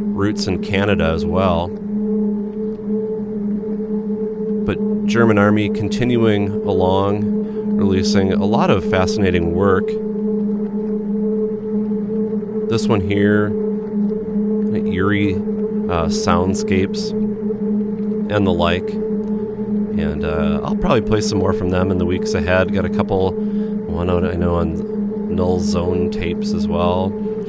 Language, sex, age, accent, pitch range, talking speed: English, male, 40-59, American, 205-215 Hz, 115 wpm